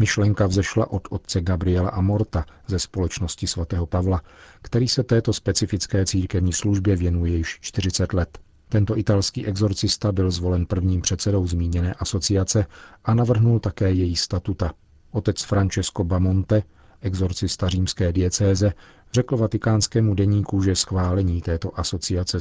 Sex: male